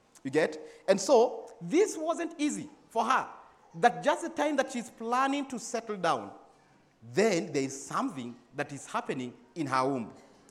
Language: English